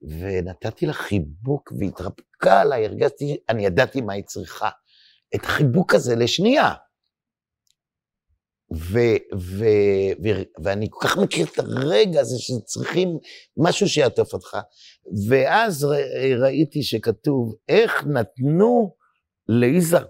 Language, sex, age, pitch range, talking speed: Hebrew, male, 50-69, 105-165 Hz, 110 wpm